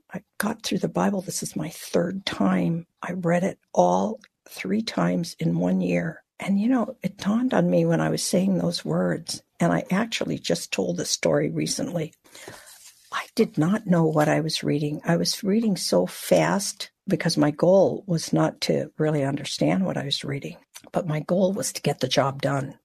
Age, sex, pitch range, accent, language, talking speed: 60-79, female, 155-190 Hz, American, English, 195 wpm